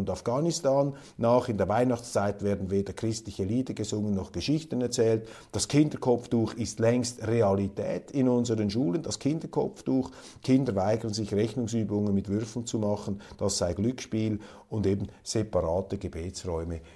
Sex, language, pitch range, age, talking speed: male, German, 105-135 Hz, 50-69, 140 wpm